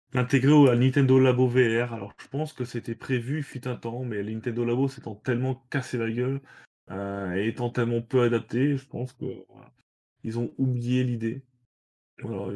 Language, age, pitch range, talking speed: French, 20-39, 115-135 Hz, 185 wpm